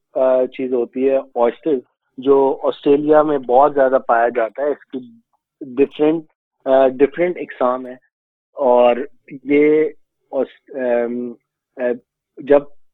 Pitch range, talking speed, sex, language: 125-150 Hz, 65 wpm, male, Urdu